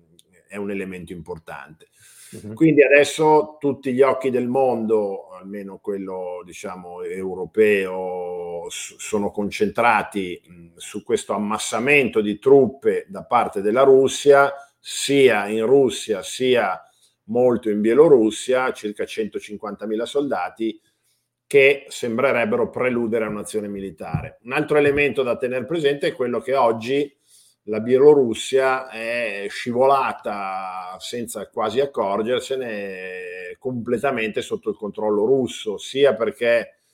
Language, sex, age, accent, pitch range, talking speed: Italian, male, 50-69, native, 100-150 Hz, 105 wpm